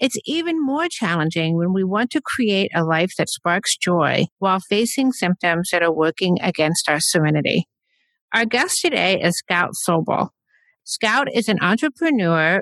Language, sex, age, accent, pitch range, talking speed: English, female, 50-69, American, 180-260 Hz, 155 wpm